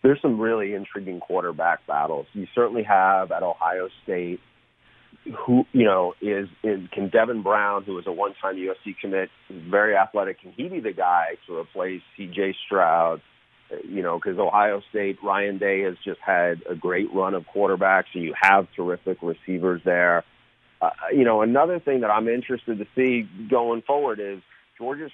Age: 40-59